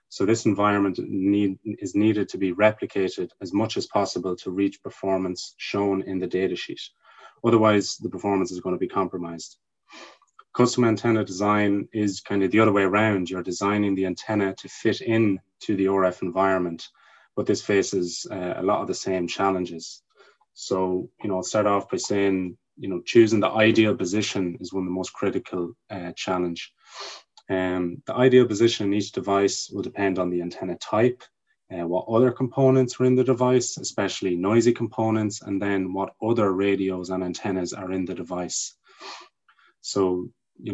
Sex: male